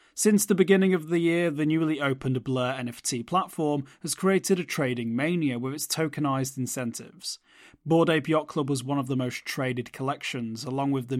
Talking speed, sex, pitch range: 190 wpm, male, 130-165 Hz